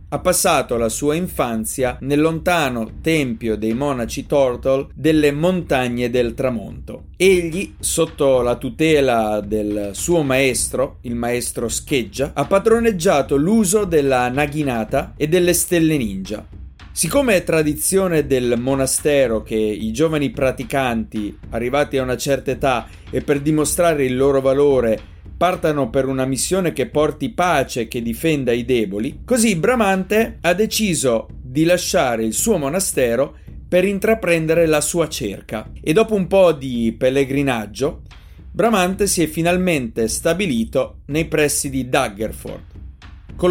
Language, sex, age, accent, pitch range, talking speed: Italian, male, 30-49, native, 115-165 Hz, 130 wpm